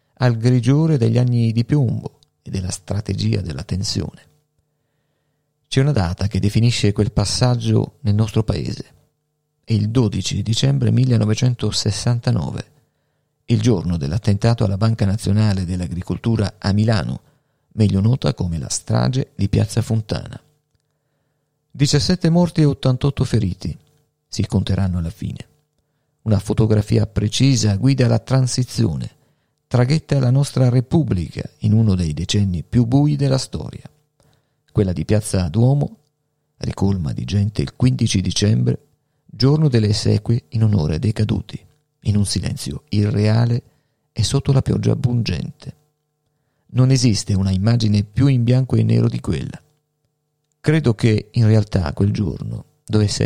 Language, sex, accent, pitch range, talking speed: Italian, male, native, 105-145 Hz, 130 wpm